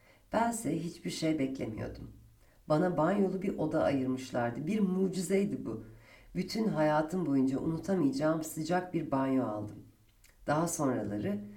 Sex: female